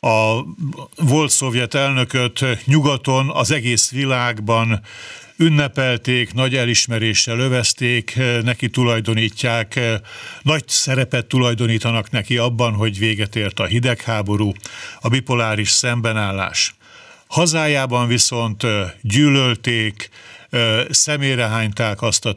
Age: 60-79